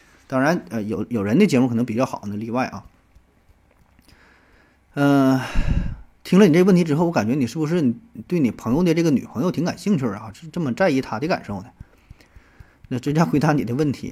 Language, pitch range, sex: Chinese, 115-150 Hz, male